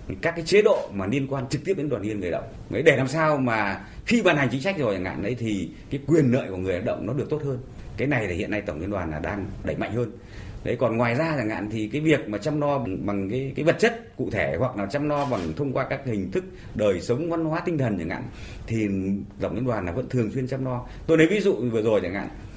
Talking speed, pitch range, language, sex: 290 wpm, 105-145 Hz, Vietnamese, male